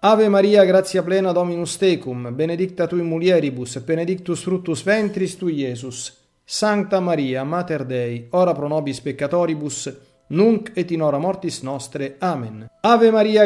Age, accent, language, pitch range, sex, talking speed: 40-59, native, Italian, 140-190 Hz, male, 145 wpm